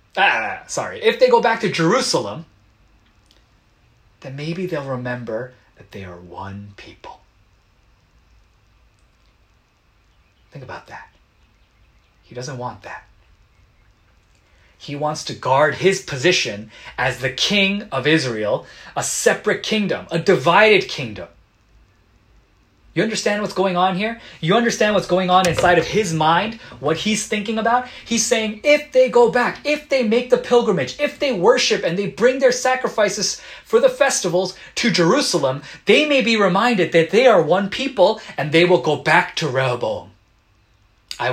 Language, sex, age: Korean, male, 30-49